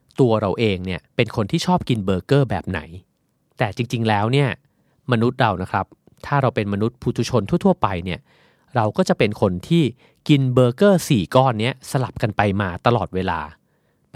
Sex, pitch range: male, 100-140 Hz